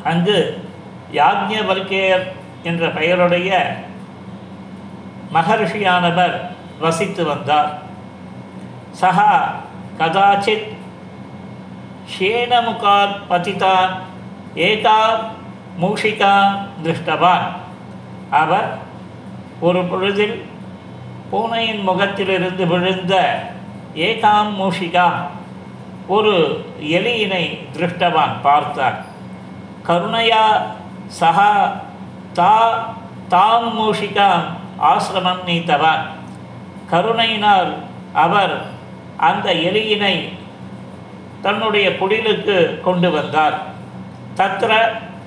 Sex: male